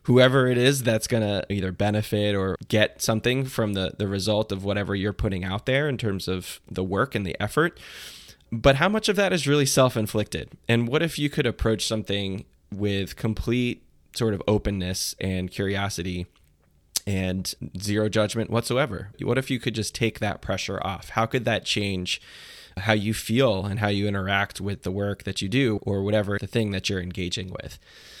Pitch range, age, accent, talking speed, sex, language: 95-115 Hz, 20-39, American, 190 wpm, male, English